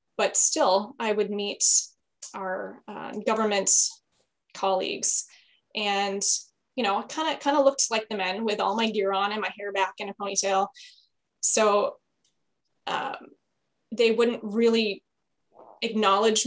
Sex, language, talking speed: female, English, 140 wpm